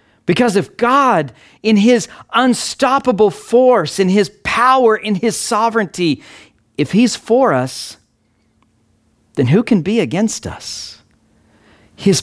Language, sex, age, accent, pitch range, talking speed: English, male, 50-69, American, 125-195 Hz, 120 wpm